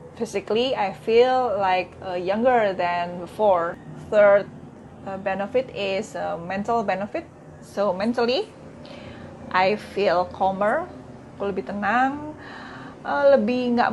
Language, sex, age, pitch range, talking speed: Indonesian, female, 20-39, 190-240 Hz, 95 wpm